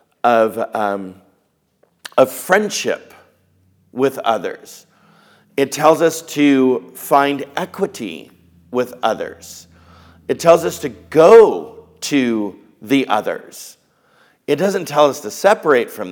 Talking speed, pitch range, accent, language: 110 wpm, 115-150 Hz, American, English